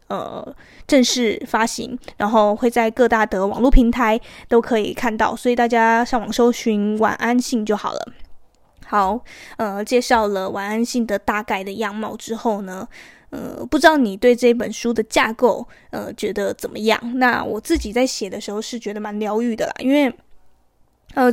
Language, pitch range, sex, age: Chinese, 215-250 Hz, female, 20-39